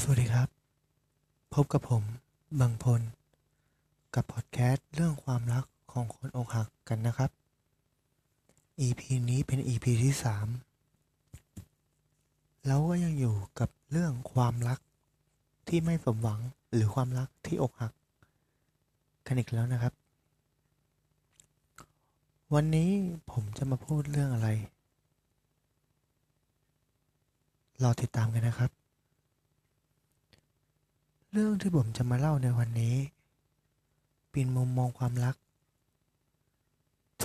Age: 20-39